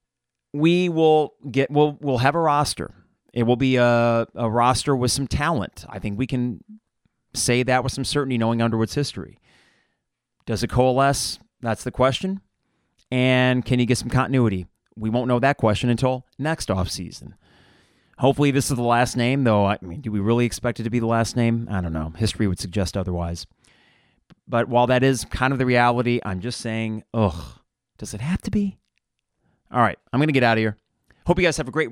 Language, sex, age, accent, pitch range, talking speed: English, male, 30-49, American, 105-135 Hz, 200 wpm